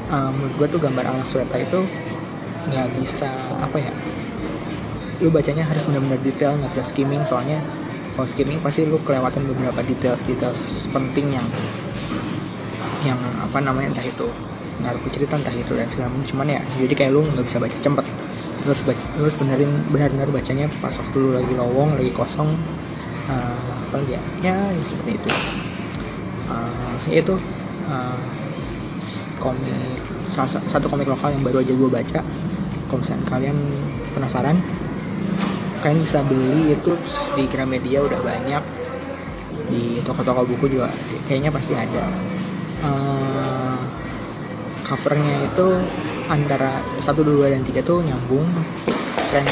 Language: Indonesian